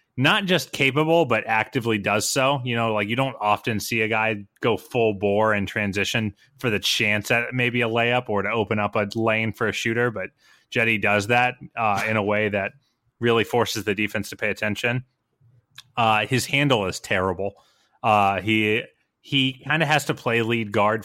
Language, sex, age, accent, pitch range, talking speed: English, male, 30-49, American, 105-125 Hz, 195 wpm